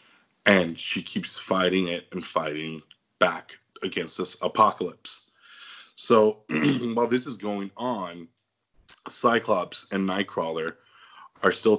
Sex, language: male, English